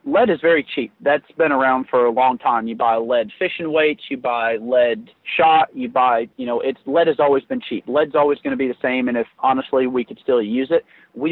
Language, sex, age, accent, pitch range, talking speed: English, male, 30-49, American, 130-175 Hz, 245 wpm